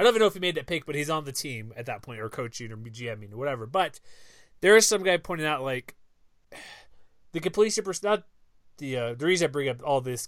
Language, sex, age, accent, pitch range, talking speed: English, male, 30-49, American, 130-170 Hz, 255 wpm